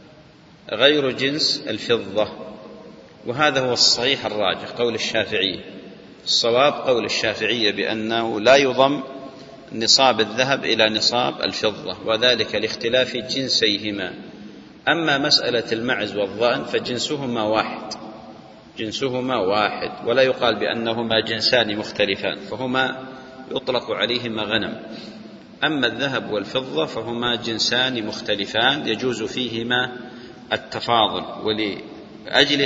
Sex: male